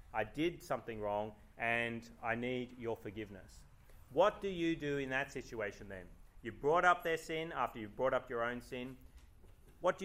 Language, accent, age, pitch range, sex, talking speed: English, Australian, 30-49, 110-145 Hz, male, 185 wpm